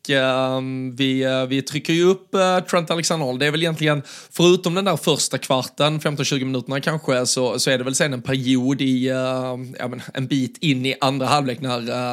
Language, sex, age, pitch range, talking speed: Swedish, male, 20-39, 130-150 Hz, 205 wpm